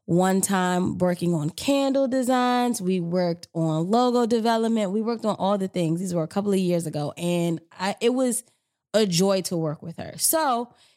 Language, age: English, 20-39